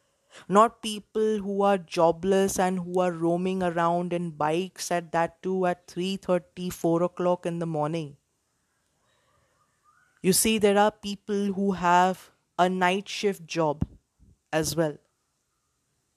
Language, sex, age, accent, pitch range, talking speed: English, female, 20-39, Indian, 160-185 Hz, 130 wpm